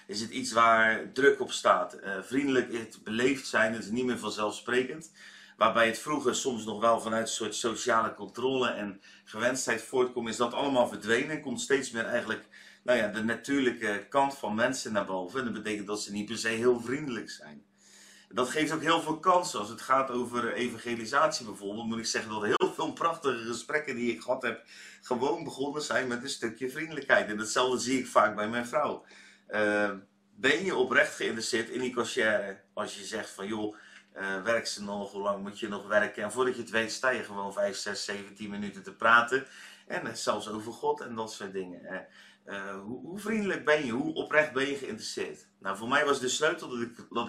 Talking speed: 210 wpm